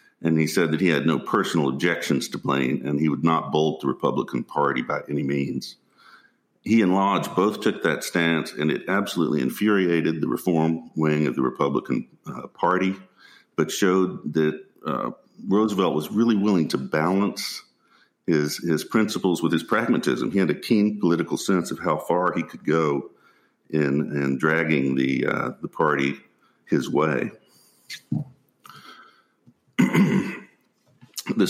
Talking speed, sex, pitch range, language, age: 150 wpm, male, 70-85 Hz, English, 50-69